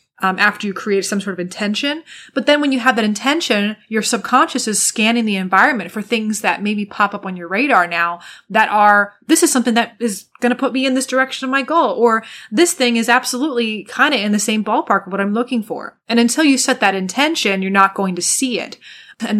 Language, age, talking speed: English, 20-39, 240 wpm